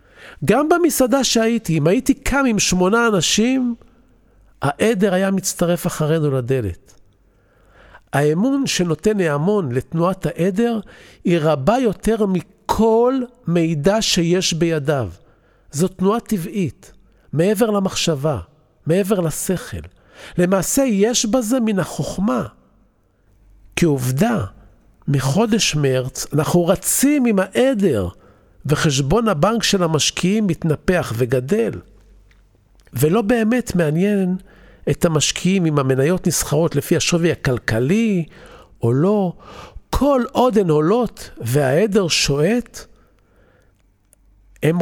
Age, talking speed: 50-69, 95 wpm